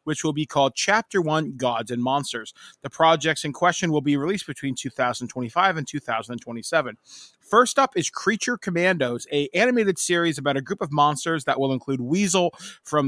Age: 30-49